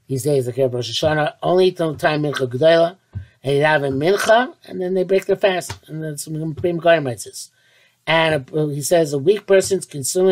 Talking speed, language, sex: 180 wpm, English, male